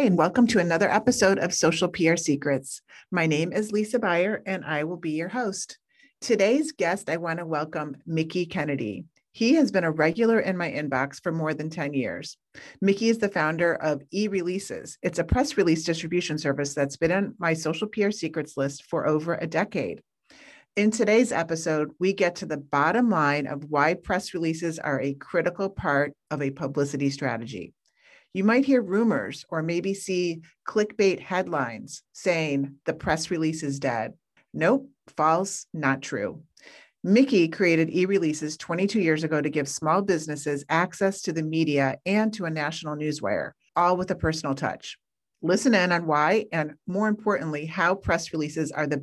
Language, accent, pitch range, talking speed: English, American, 150-190 Hz, 175 wpm